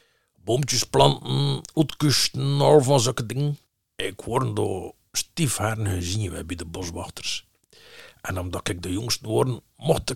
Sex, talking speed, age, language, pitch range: male, 130 wpm, 50-69, Dutch, 100-135 Hz